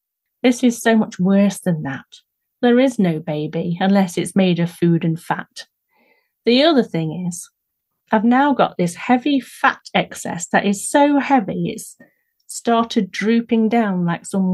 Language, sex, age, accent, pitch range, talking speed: English, female, 40-59, British, 175-220 Hz, 160 wpm